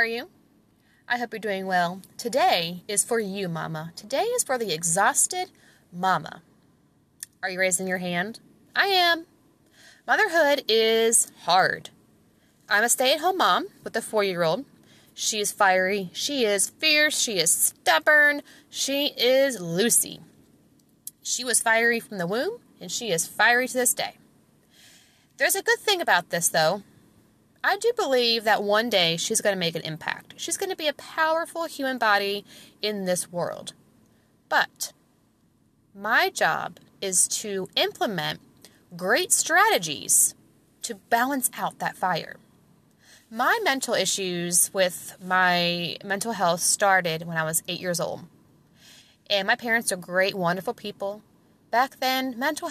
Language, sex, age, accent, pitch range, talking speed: English, female, 20-39, American, 185-270 Hz, 145 wpm